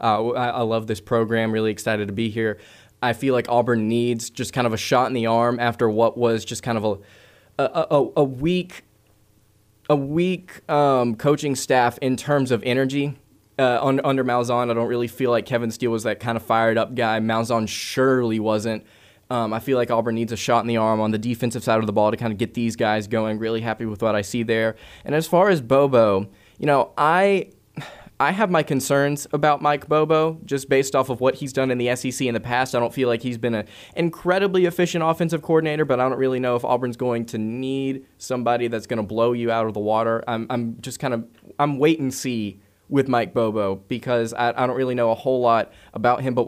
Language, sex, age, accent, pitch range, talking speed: English, male, 20-39, American, 115-135 Hz, 230 wpm